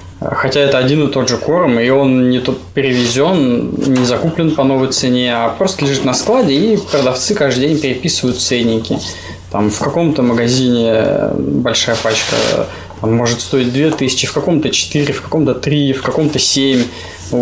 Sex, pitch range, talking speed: male, 120-150 Hz, 160 wpm